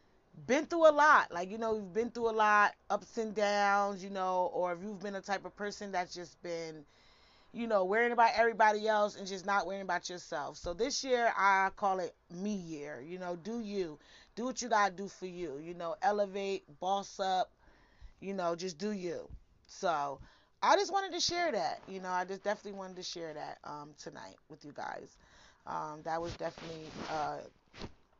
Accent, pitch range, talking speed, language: American, 170-220 Hz, 205 wpm, English